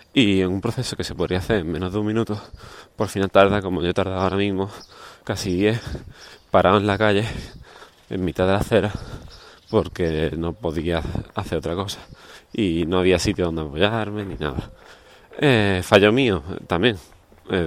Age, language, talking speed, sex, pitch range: 20-39, Spanish, 175 wpm, male, 95-120 Hz